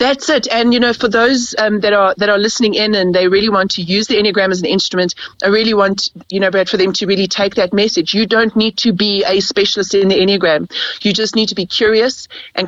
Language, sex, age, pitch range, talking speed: English, female, 30-49, 185-230 Hz, 260 wpm